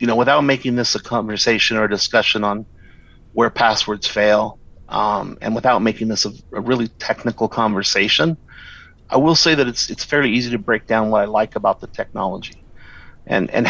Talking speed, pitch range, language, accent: 190 wpm, 100-120 Hz, English, American